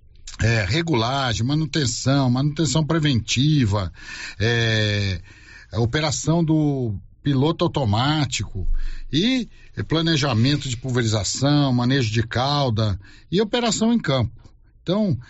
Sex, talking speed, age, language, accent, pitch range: male, 95 wpm, 60-79, Portuguese, Brazilian, 110-140 Hz